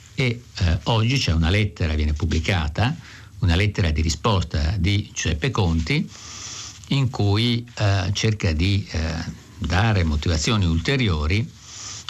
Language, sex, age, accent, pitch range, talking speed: Italian, male, 60-79, native, 90-110 Hz, 120 wpm